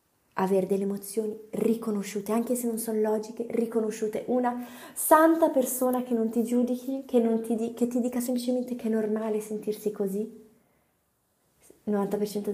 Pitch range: 190-230 Hz